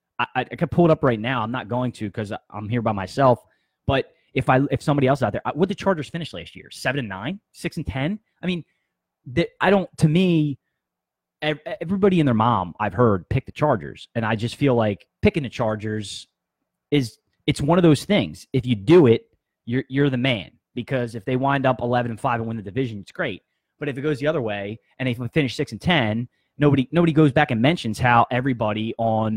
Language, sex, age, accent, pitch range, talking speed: English, male, 20-39, American, 115-150 Hz, 225 wpm